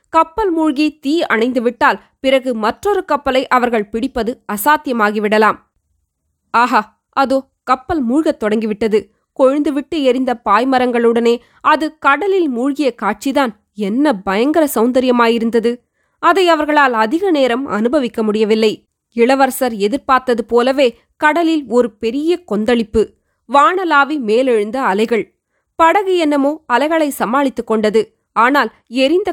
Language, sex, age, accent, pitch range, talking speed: Tamil, female, 20-39, native, 230-300 Hz, 100 wpm